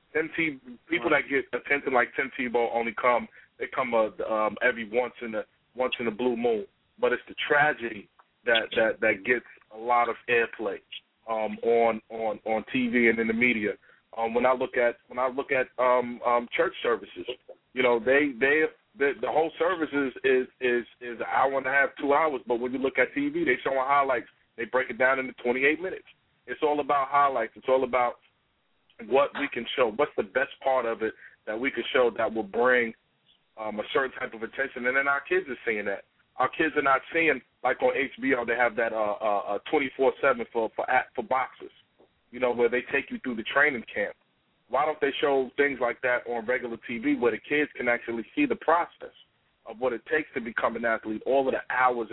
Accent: American